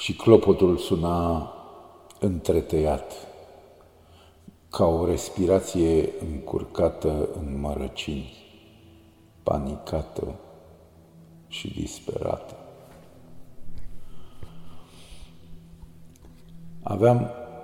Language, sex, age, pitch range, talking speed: Romanian, male, 50-69, 80-95 Hz, 50 wpm